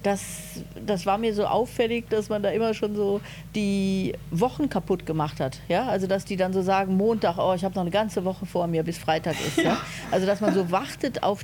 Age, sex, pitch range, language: 40-59, female, 180-215 Hz, German